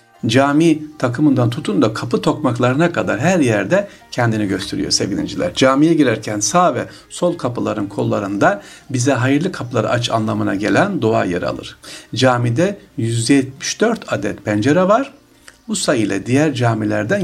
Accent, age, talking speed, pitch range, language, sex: native, 60-79, 130 wpm, 110-160 Hz, Turkish, male